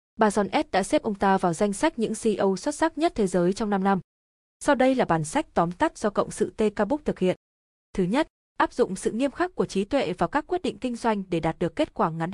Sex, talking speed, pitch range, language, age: female, 270 wpm, 185-245 Hz, Vietnamese, 20-39